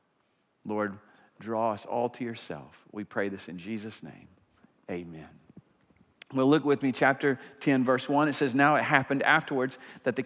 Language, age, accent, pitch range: English, 50-69, American, 130-180 Hz